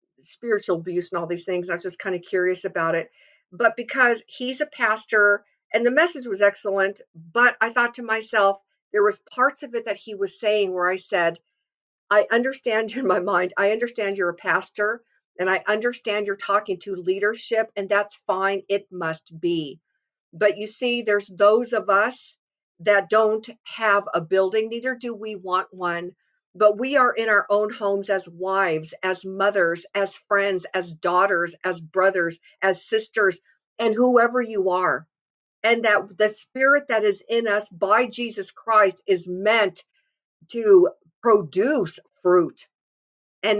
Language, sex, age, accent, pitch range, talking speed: English, female, 50-69, American, 185-230 Hz, 165 wpm